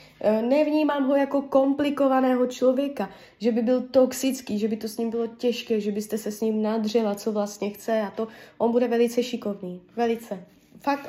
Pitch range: 210-255 Hz